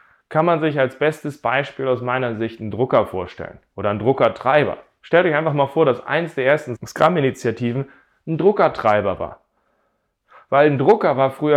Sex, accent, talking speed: male, German, 170 wpm